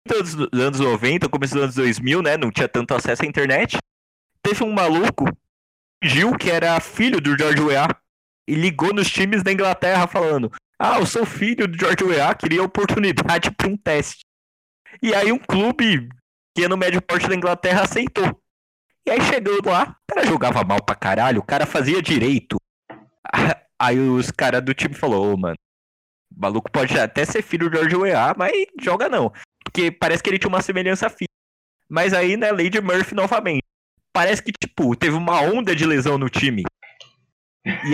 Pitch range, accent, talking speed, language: 140-205 Hz, Brazilian, 180 wpm, Portuguese